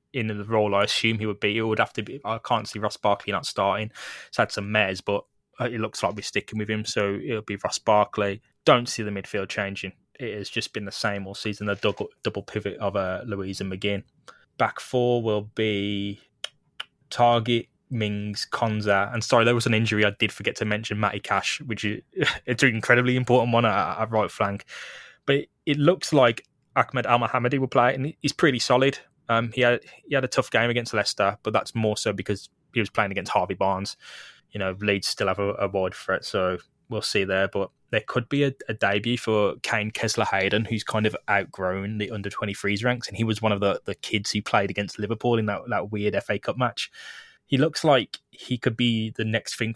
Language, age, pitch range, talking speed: English, 10-29, 100-120 Hz, 220 wpm